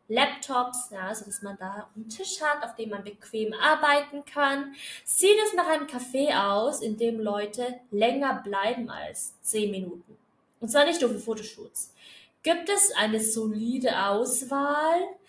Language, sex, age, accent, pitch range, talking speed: German, female, 20-39, German, 200-275 Hz, 155 wpm